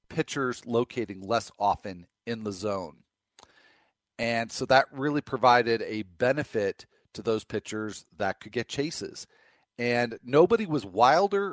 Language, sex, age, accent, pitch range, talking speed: English, male, 40-59, American, 110-145 Hz, 130 wpm